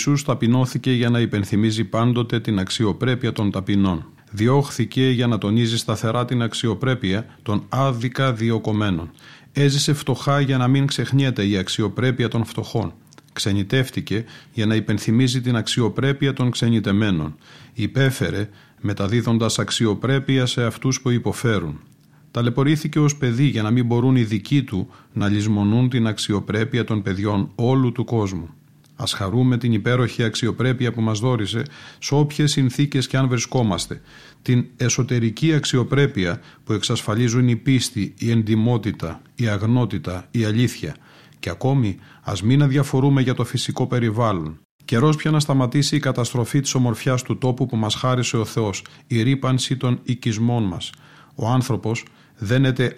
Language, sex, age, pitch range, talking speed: Greek, male, 40-59, 110-130 Hz, 140 wpm